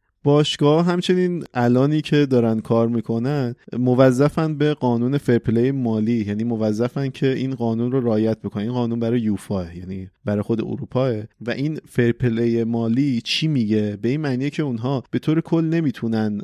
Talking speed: 155 wpm